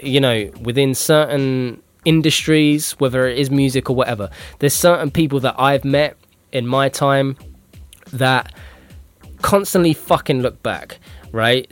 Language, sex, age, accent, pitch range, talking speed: English, male, 10-29, British, 125-150 Hz, 135 wpm